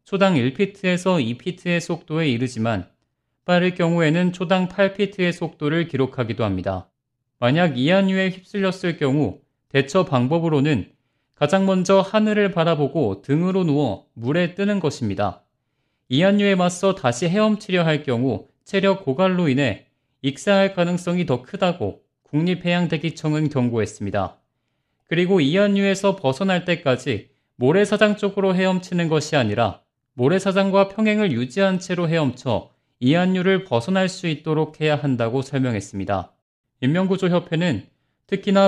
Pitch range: 130-185 Hz